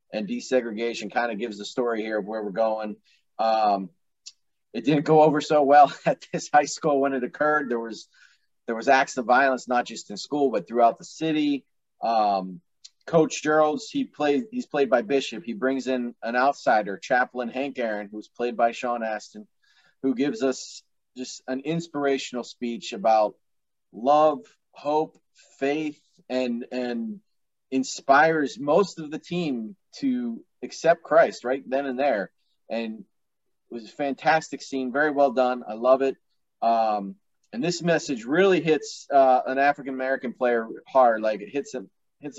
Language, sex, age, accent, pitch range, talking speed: English, male, 30-49, American, 115-145 Hz, 165 wpm